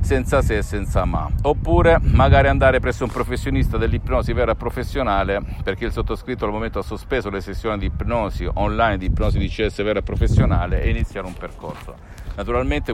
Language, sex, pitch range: Italian, male, 95-120 Hz